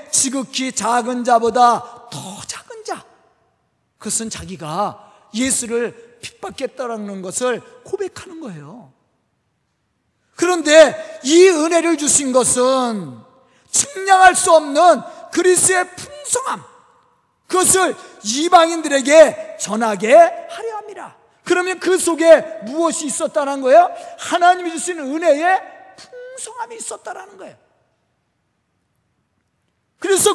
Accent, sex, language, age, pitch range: native, male, Korean, 40-59, 245-340 Hz